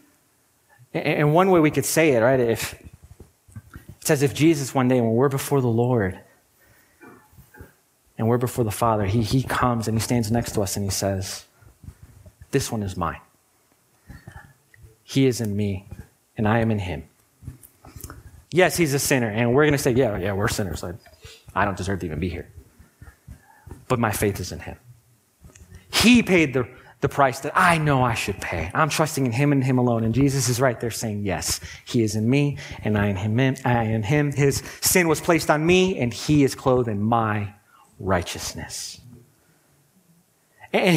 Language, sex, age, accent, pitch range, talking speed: English, male, 30-49, American, 105-145 Hz, 185 wpm